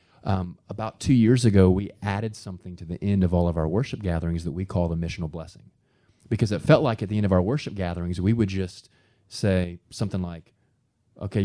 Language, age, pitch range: English, 30-49, 90-120 Hz